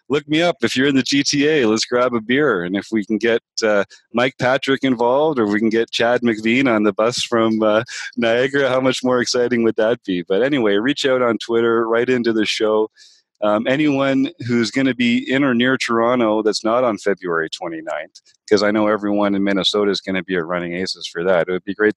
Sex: male